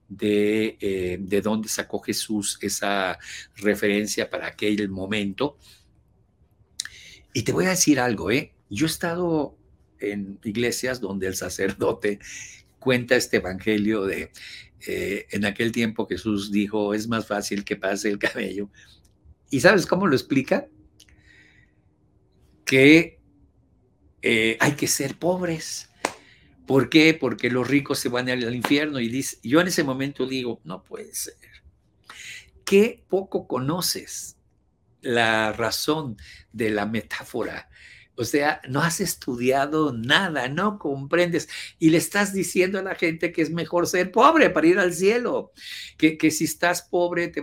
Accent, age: Mexican, 50-69